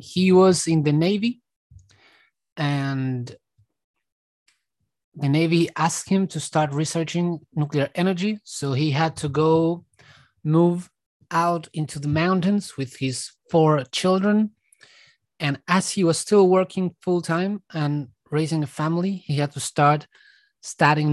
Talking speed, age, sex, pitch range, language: 130 wpm, 30-49, male, 140-180 Hz, English